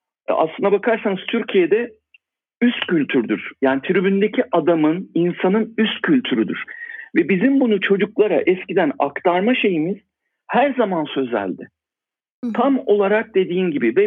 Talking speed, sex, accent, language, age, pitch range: 110 wpm, male, native, Turkish, 60-79, 165-215 Hz